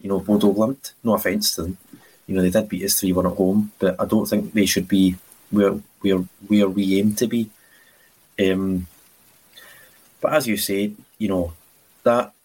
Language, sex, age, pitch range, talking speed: English, male, 20-39, 95-110 Hz, 190 wpm